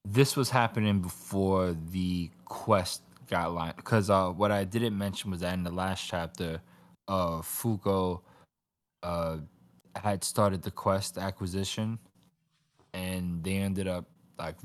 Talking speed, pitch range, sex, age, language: 135 wpm, 85-100 Hz, male, 20-39, English